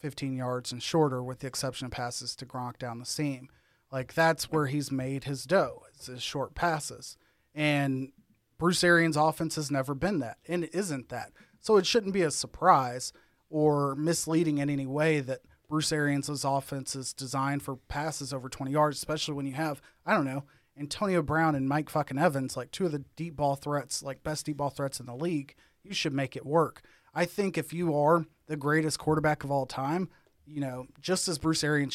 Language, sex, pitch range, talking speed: English, male, 135-160 Hz, 205 wpm